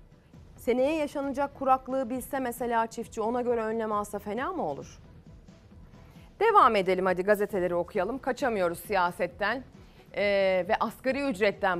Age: 30-49